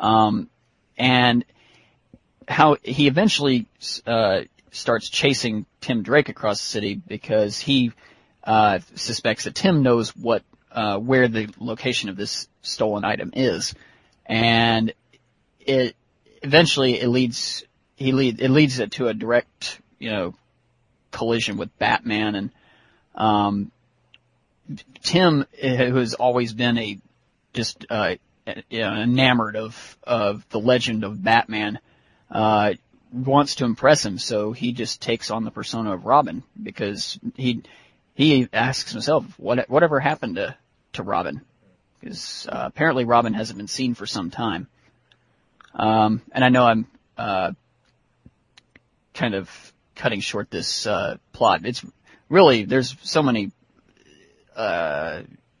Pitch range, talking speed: 110-130 Hz, 130 wpm